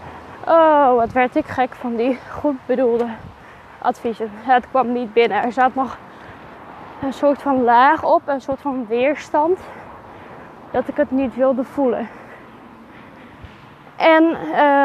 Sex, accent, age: female, Dutch, 10-29